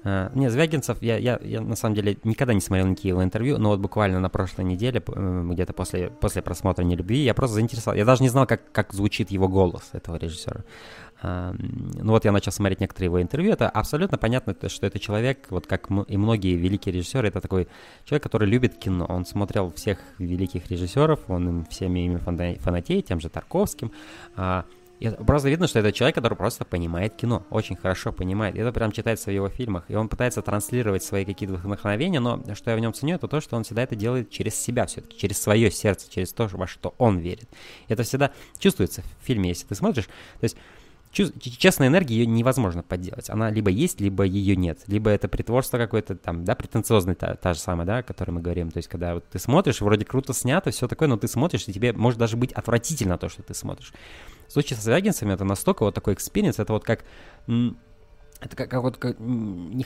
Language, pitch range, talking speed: Russian, 95-120 Hz, 205 wpm